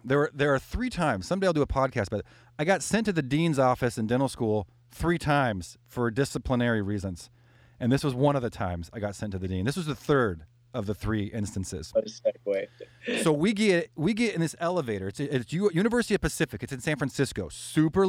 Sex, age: male, 30-49